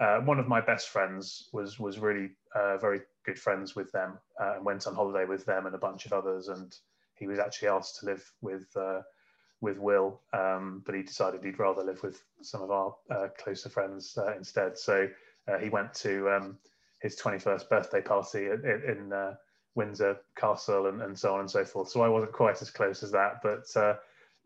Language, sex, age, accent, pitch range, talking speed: English, male, 20-39, British, 100-115 Hz, 215 wpm